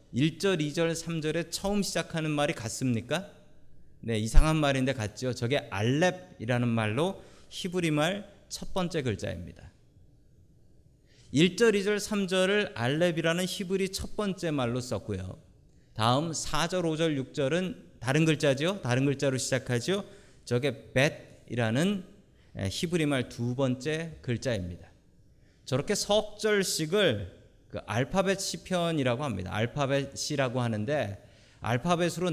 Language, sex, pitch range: Korean, male, 115-170 Hz